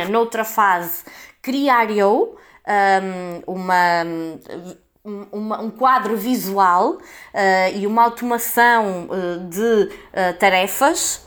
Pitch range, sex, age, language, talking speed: 195-265 Hz, female, 20-39, Portuguese, 70 wpm